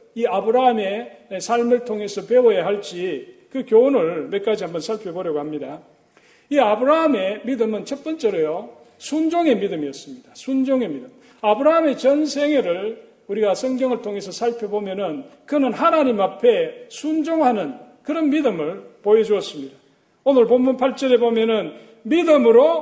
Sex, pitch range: male, 210-290 Hz